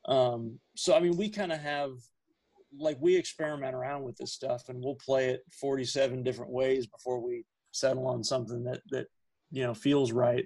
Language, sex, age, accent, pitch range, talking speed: English, male, 30-49, American, 125-145 Hz, 190 wpm